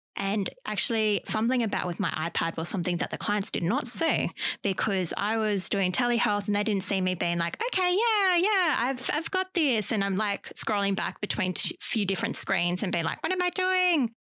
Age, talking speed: 20-39, 220 wpm